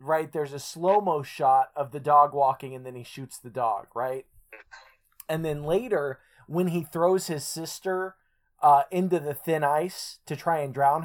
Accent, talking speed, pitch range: American, 180 wpm, 150-210 Hz